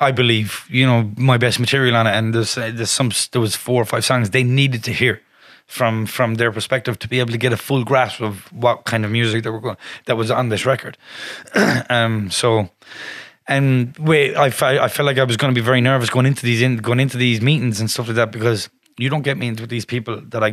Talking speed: 250 wpm